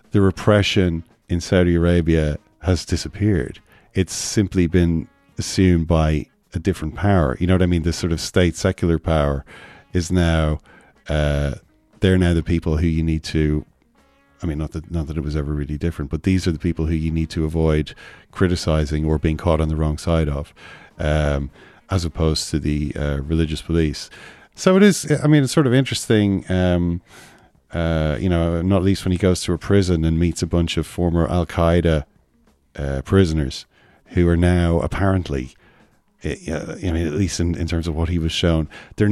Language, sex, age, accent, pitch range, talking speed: English, male, 40-59, Irish, 80-100 Hz, 190 wpm